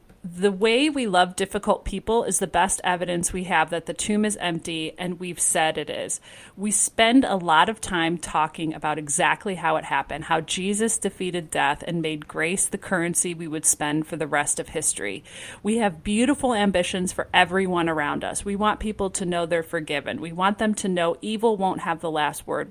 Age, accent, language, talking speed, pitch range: 30-49, American, English, 205 wpm, 160-205 Hz